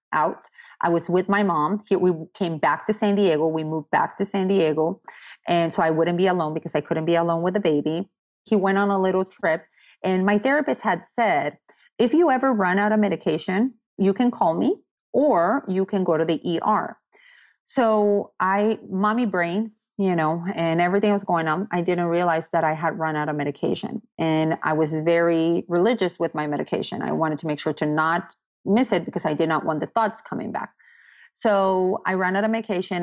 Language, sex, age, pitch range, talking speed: English, female, 30-49, 165-215 Hz, 205 wpm